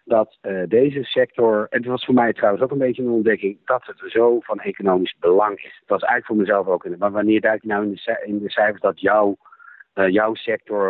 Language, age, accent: Dutch, 50-69, Dutch